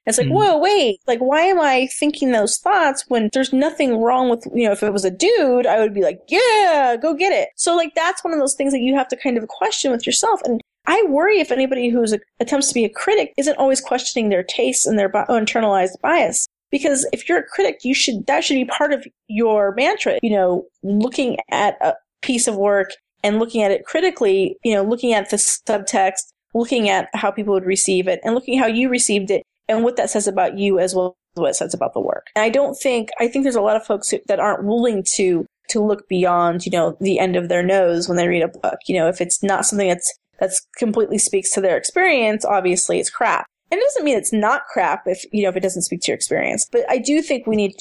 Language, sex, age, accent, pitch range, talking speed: English, female, 30-49, American, 195-270 Hz, 250 wpm